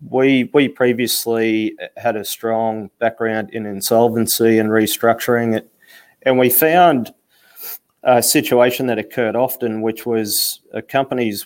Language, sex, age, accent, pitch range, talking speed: English, male, 30-49, Australian, 110-120 Hz, 125 wpm